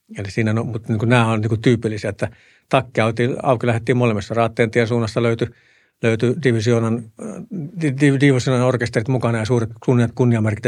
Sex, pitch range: male, 110-125 Hz